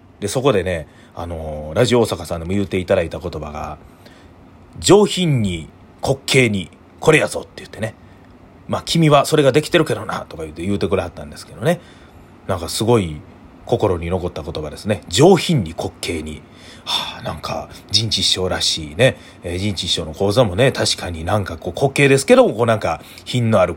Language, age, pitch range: Japanese, 30-49, 85-125 Hz